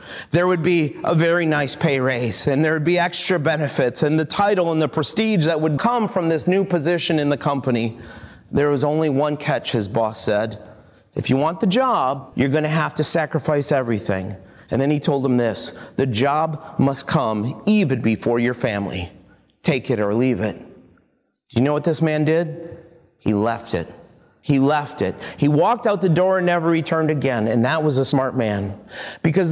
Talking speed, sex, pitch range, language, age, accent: 200 wpm, male, 140-190 Hz, English, 40-59, American